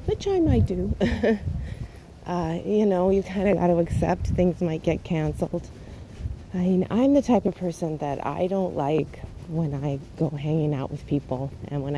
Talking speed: 190 wpm